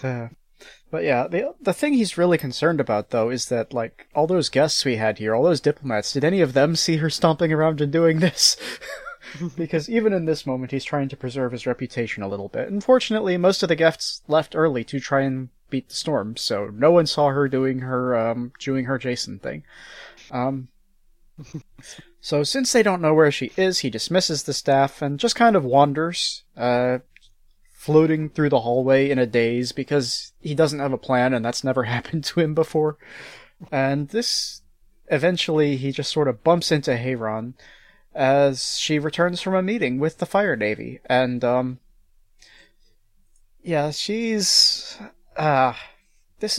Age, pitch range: 30-49, 125-165 Hz